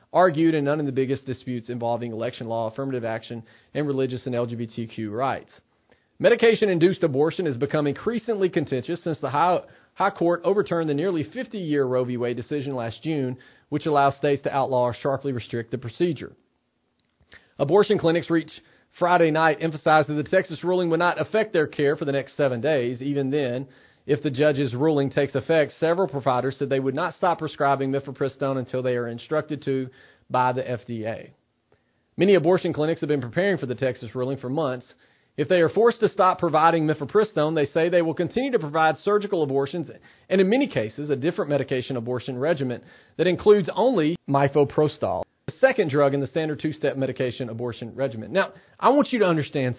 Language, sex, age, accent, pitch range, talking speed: English, male, 40-59, American, 130-165 Hz, 180 wpm